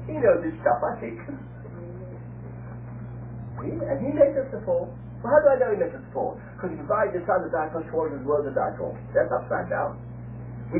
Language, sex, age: English, male, 60-79